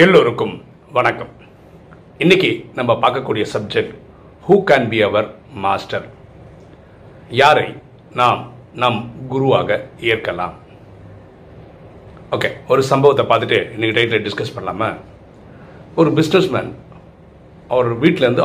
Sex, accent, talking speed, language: male, native, 85 wpm, Tamil